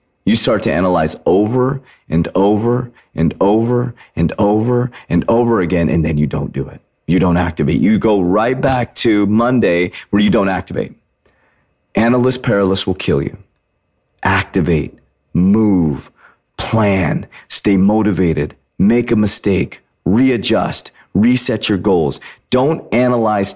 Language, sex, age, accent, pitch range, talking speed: English, male, 40-59, American, 90-115 Hz, 130 wpm